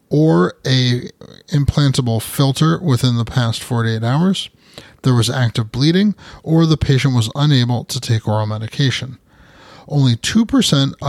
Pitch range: 120-160 Hz